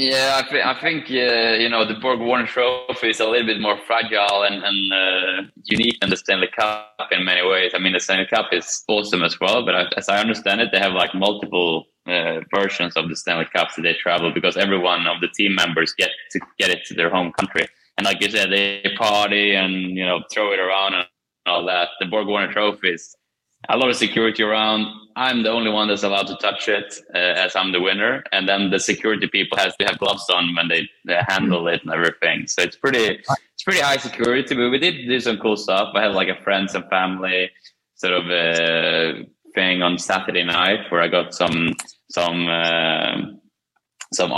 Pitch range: 90-110 Hz